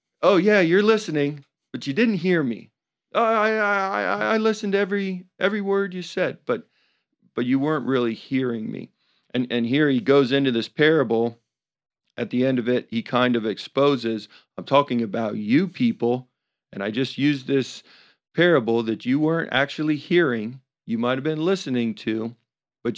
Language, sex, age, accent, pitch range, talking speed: English, male, 40-59, American, 115-145 Hz, 175 wpm